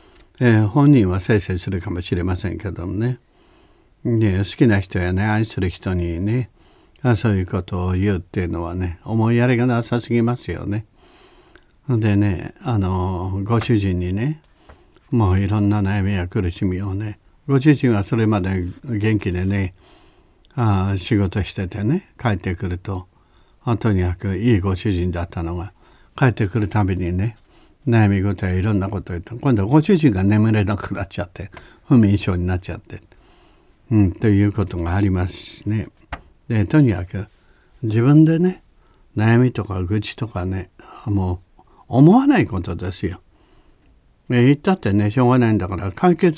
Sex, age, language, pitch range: male, 60-79, Japanese, 95-120 Hz